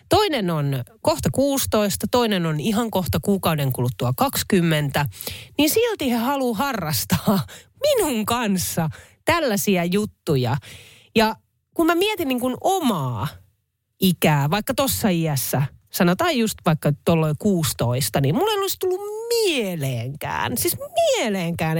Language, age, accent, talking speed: Finnish, 30-49, native, 120 wpm